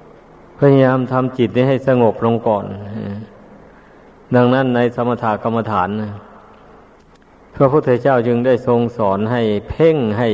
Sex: male